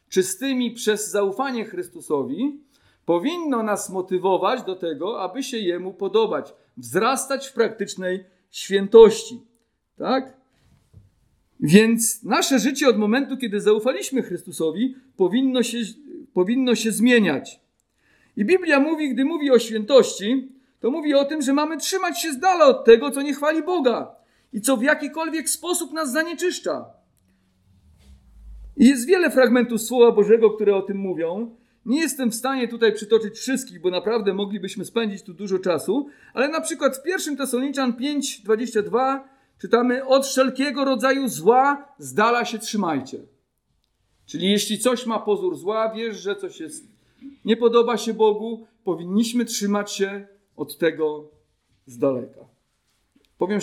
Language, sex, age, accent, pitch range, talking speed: Polish, male, 50-69, native, 200-270 Hz, 135 wpm